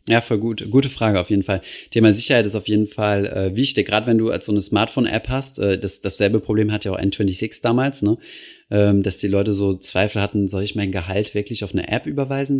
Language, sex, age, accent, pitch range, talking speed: German, male, 30-49, German, 95-110 Hz, 245 wpm